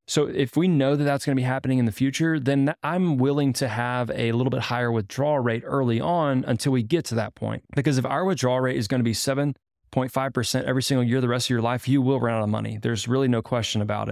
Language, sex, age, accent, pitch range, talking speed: English, male, 20-39, American, 115-135 Hz, 260 wpm